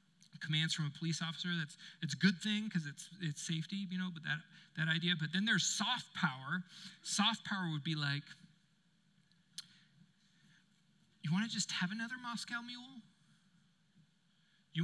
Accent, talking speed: American, 155 wpm